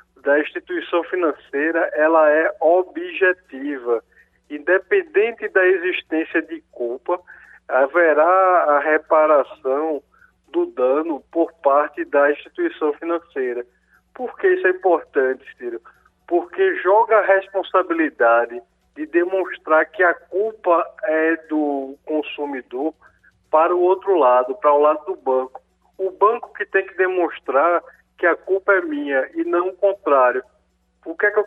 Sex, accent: male, Brazilian